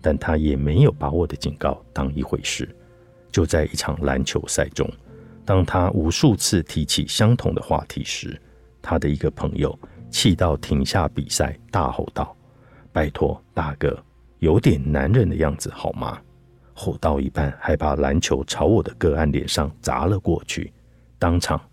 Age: 50-69